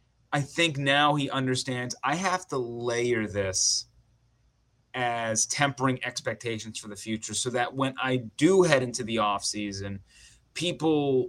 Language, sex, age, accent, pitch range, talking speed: English, male, 30-49, American, 110-130 Hz, 140 wpm